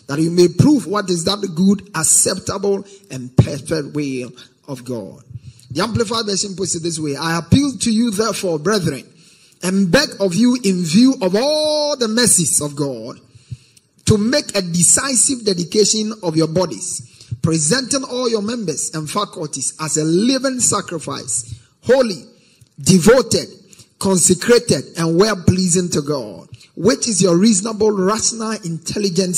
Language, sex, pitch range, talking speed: English, male, 155-205 Hz, 145 wpm